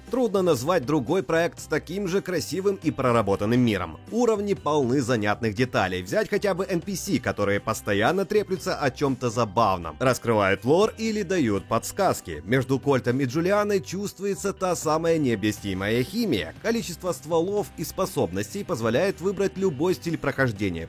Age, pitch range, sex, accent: 30-49, 115-175 Hz, male, native